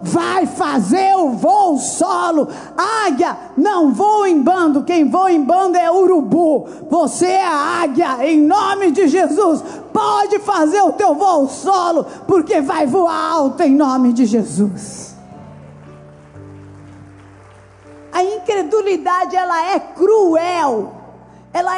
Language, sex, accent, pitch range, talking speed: Portuguese, female, Brazilian, 270-360 Hz, 120 wpm